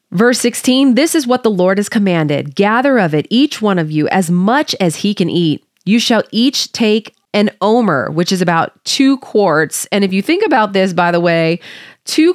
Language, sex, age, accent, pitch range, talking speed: English, female, 30-49, American, 175-250 Hz, 210 wpm